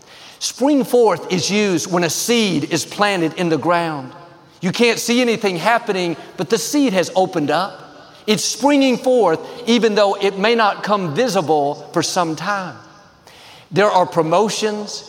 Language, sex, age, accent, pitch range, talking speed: English, male, 50-69, American, 170-220 Hz, 155 wpm